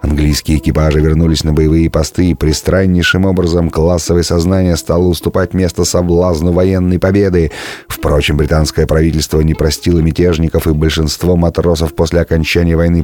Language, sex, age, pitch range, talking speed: Russian, male, 30-49, 80-95 Hz, 135 wpm